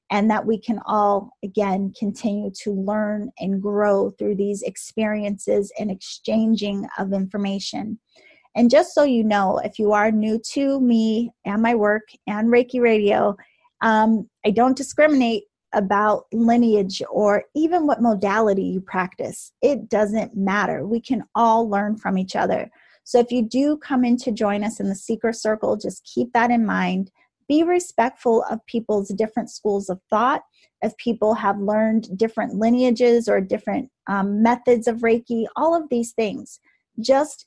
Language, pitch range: English, 205-240 Hz